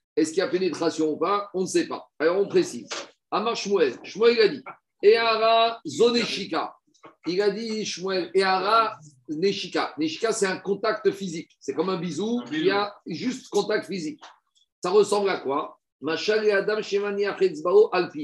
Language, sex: French, male